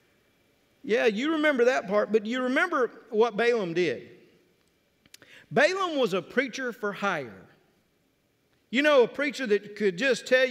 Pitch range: 200-250 Hz